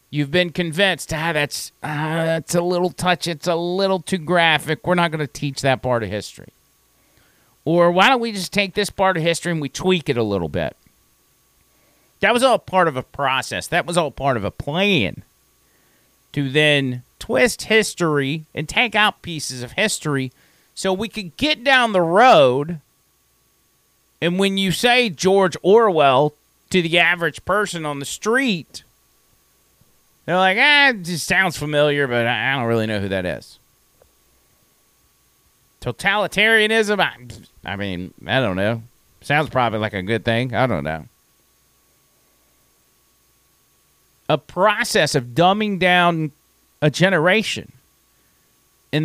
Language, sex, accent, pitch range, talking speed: English, male, American, 130-185 Hz, 150 wpm